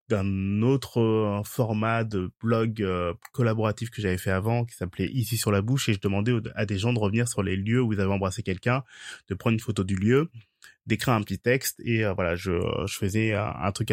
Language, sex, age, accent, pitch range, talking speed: French, male, 20-39, French, 100-120 Hz, 220 wpm